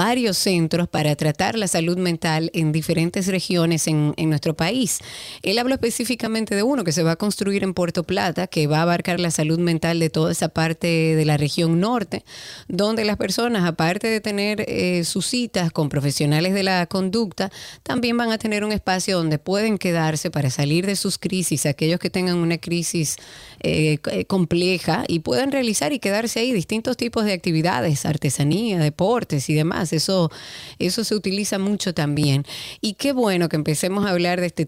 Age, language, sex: 30-49, Spanish, female